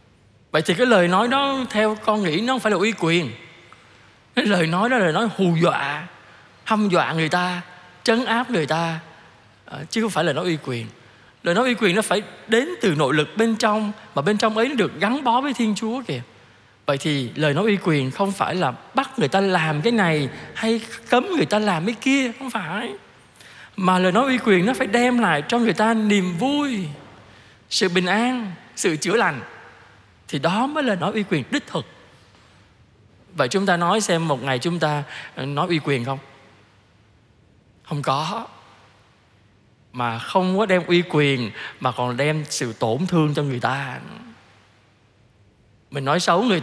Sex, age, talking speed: male, 20-39, 195 wpm